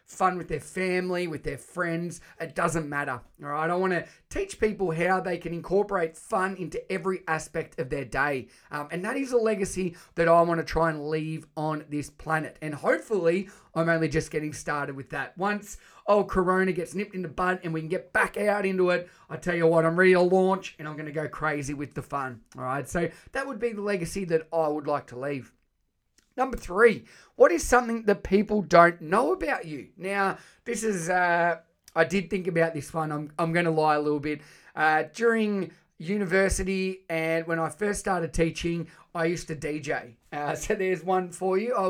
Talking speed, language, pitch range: 215 wpm, English, 155-190 Hz